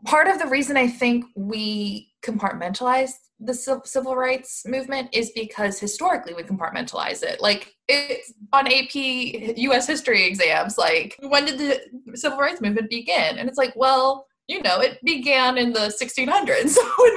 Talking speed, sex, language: 160 wpm, female, English